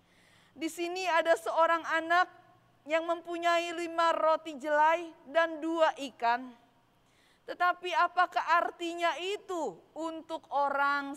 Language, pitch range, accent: Indonesian, 270-340 Hz, native